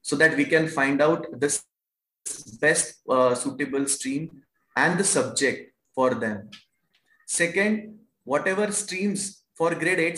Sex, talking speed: male, 130 wpm